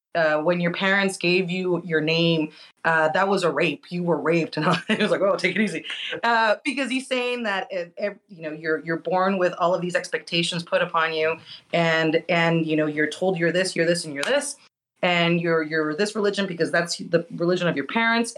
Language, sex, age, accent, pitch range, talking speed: English, female, 30-49, American, 165-210 Hz, 225 wpm